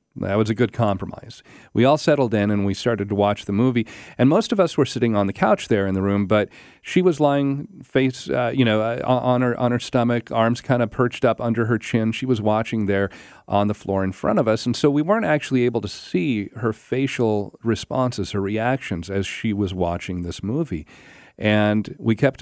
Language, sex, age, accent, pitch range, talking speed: English, male, 40-59, American, 100-125 Hz, 220 wpm